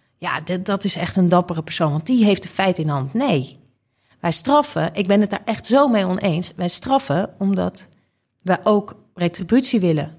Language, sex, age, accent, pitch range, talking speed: Dutch, female, 40-59, Dutch, 155-205 Hz, 190 wpm